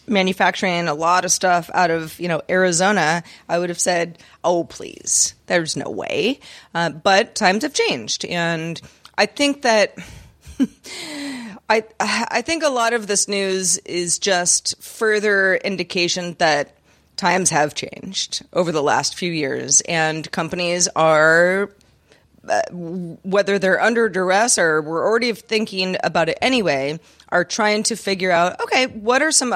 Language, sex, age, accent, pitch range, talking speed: English, female, 30-49, American, 170-215 Hz, 150 wpm